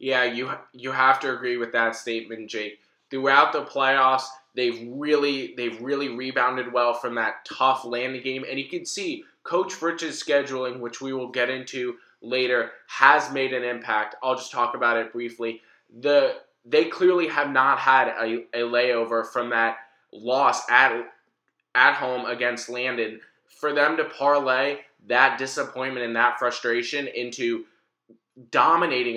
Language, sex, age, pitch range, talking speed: English, male, 20-39, 120-140 Hz, 155 wpm